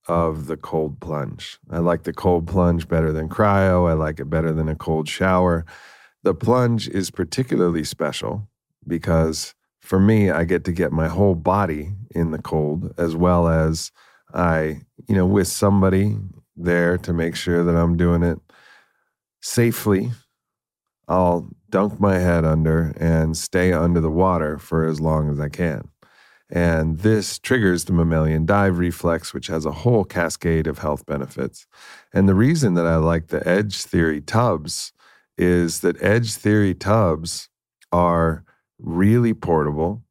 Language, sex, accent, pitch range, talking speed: English, male, American, 80-95 Hz, 155 wpm